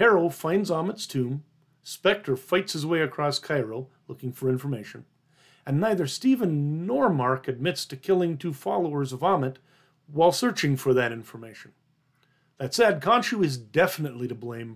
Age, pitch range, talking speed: 40-59, 135-170 Hz, 150 wpm